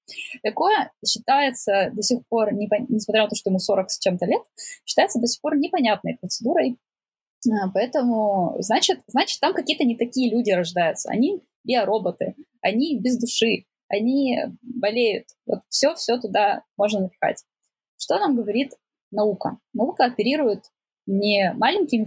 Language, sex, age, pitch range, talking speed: Russian, female, 20-39, 210-275 Hz, 135 wpm